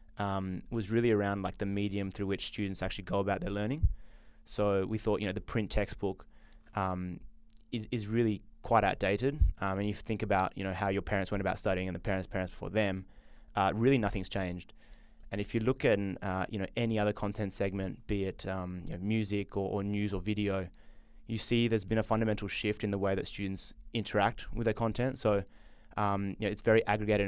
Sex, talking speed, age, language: male, 215 wpm, 20-39, English